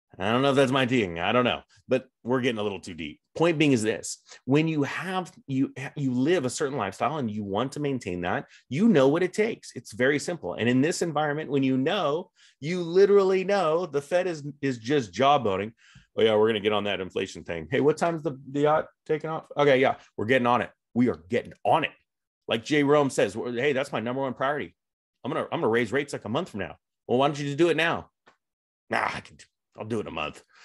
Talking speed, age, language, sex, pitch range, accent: 250 wpm, 30-49, English, male, 115-165 Hz, American